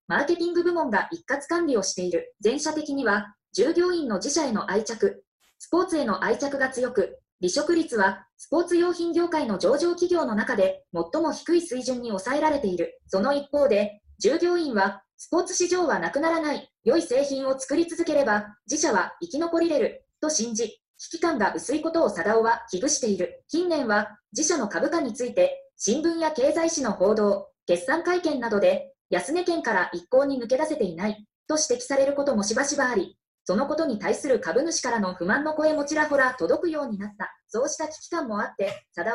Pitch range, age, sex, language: 215-325 Hz, 20-39, female, Japanese